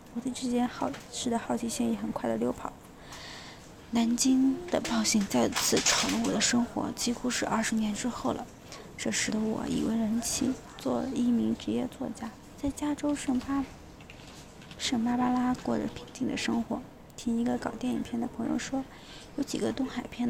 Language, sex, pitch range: Chinese, female, 230-255 Hz